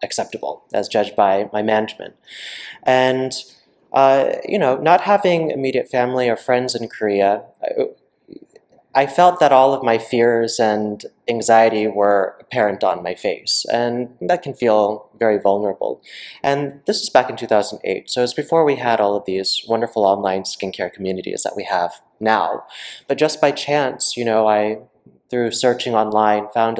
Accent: American